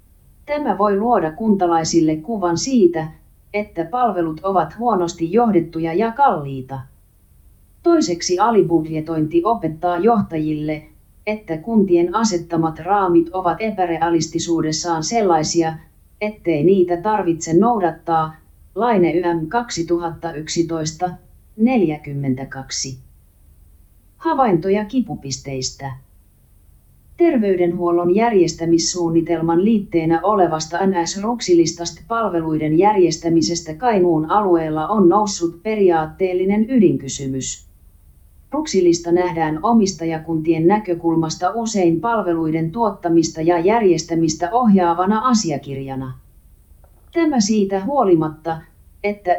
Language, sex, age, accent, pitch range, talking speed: Finnish, female, 30-49, native, 155-195 Hz, 75 wpm